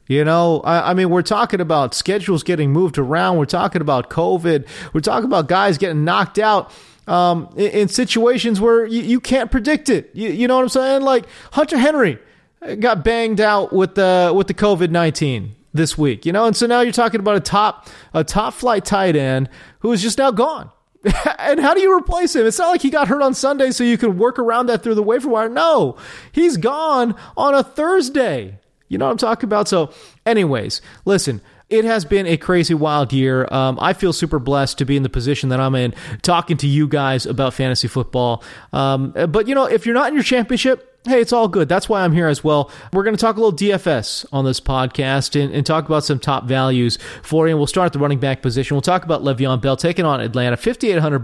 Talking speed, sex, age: 225 wpm, male, 30-49